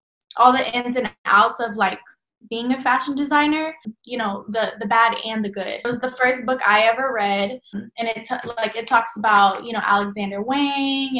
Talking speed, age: 205 wpm, 10-29